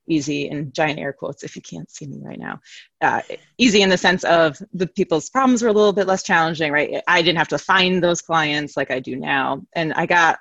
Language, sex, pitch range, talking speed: English, female, 145-190 Hz, 240 wpm